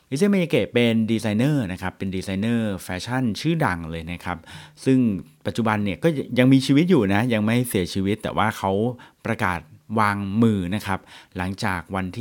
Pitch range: 90-125 Hz